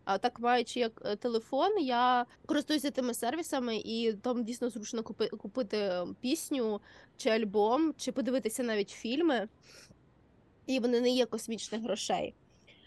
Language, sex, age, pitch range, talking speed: Ukrainian, female, 20-39, 225-270 Hz, 125 wpm